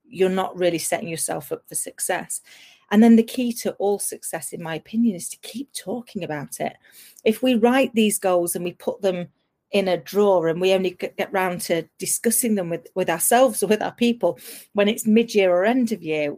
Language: English